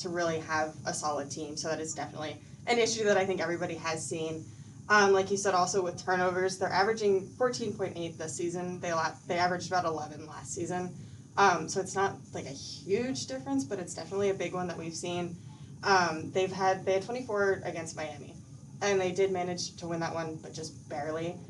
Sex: female